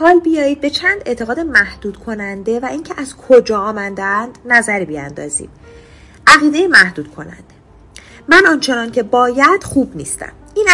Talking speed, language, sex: 135 wpm, Persian, female